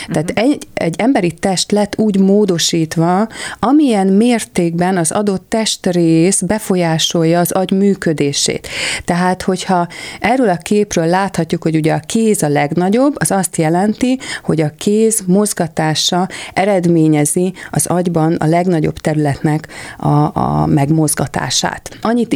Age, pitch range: 30-49, 155-190 Hz